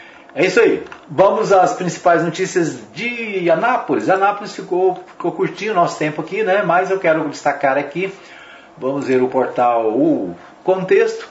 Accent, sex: Brazilian, male